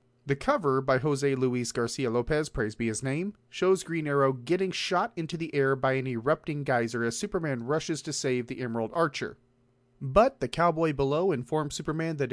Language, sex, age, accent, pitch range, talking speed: English, male, 30-49, American, 125-160 Hz, 185 wpm